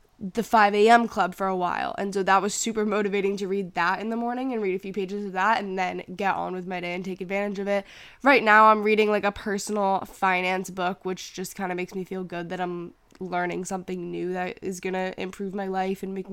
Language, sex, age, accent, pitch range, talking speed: English, female, 10-29, American, 185-215 Hz, 245 wpm